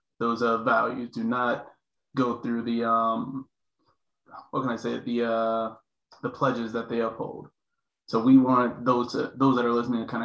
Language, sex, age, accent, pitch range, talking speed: English, male, 20-39, American, 115-125 Hz, 180 wpm